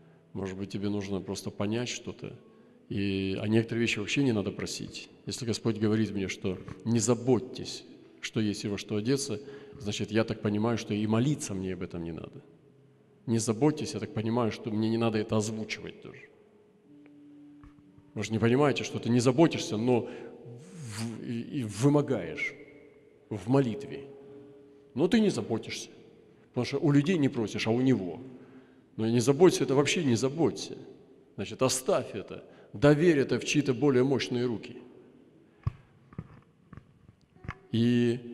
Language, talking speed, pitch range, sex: Russian, 145 wpm, 110-140 Hz, male